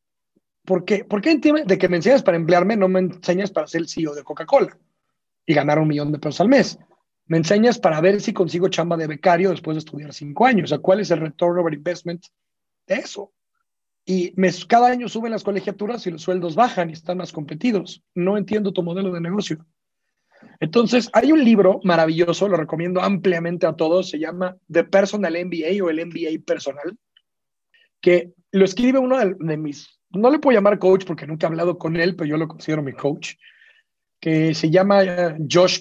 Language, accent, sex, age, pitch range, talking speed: Spanish, Mexican, male, 40-59, 165-205 Hz, 200 wpm